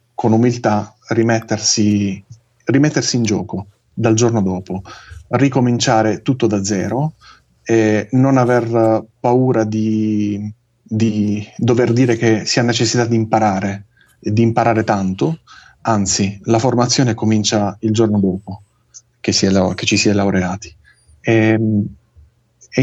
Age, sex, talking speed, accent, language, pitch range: 30-49, male, 120 wpm, native, Italian, 105-125 Hz